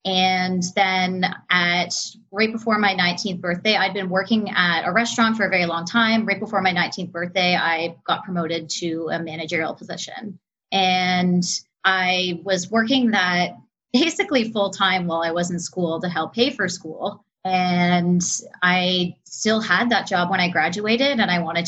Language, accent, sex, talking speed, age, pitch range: English, American, female, 165 wpm, 30-49, 175-210 Hz